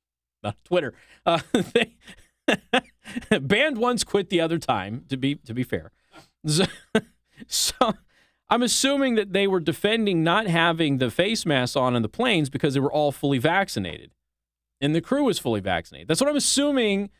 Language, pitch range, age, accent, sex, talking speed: English, 150-225 Hz, 30-49, American, male, 165 wpm